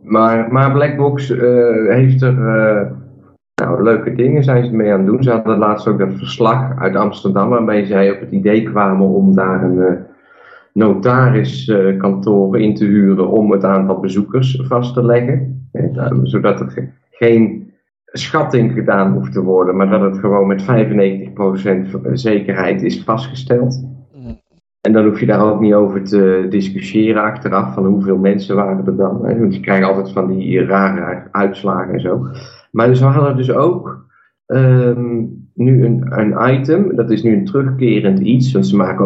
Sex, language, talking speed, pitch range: male, Dutch, 170 wpm, 95-125 Hz